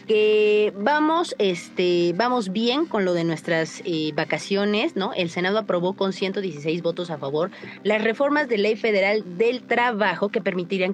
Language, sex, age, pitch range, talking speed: Spanish, female, 30-49, 165-220 Hz, 165 wpm